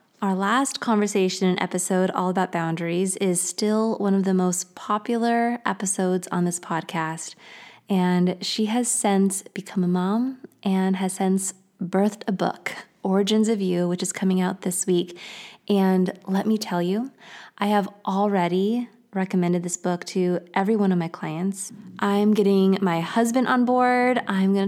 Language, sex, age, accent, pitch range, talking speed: English, female, 20-39, American, 185-230 Hz, 160 wpm